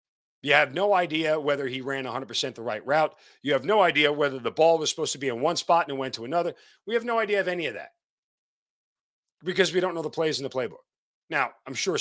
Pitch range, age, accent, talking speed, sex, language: 125-165 Hz, 40-59, American, 250 wpm, male, English